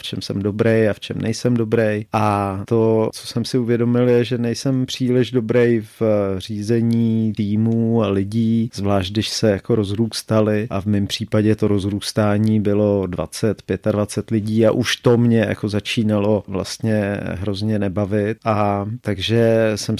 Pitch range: 105-115 Hz